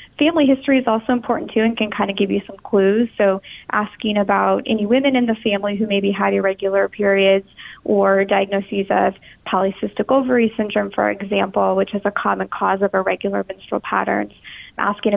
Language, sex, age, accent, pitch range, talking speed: English, female, 20-39, American, 200-230 Hz, 180 wpm